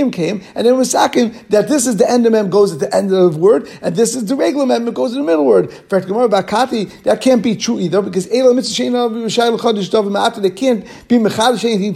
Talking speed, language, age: 225 wpm, English, 50-69